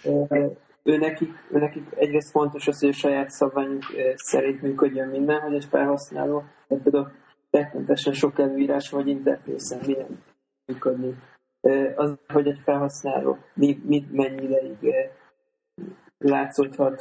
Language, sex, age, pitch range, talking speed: Hungarian, male, 20-39, 130-145 Hz, 110 wpm